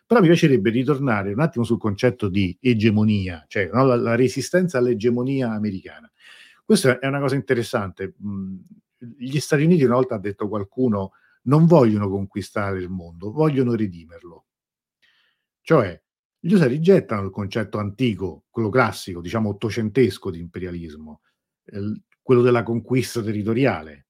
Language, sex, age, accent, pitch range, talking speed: Italian, male, 50-69, native, 100-125 Hz, 140 wpm